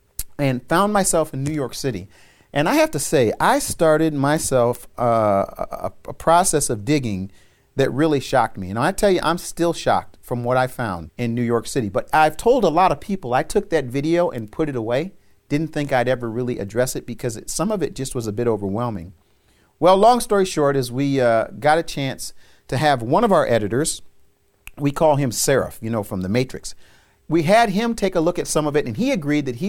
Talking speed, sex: 225 wpm, male